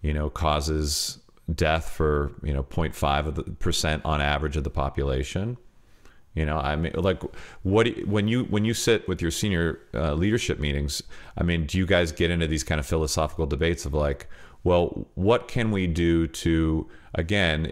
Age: 40-59